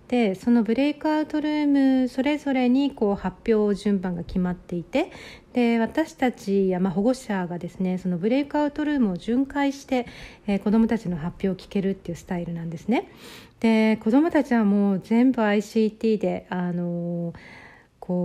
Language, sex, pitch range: Japanese, female, 180-235 Hz